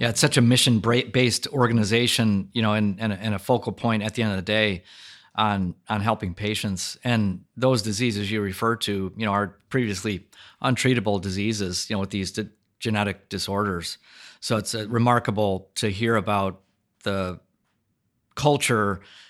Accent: American